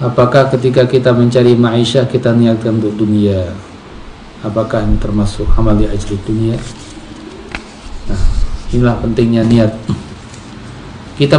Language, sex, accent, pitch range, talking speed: Indonesian, male, native, 110-140 Hz, 105 wpm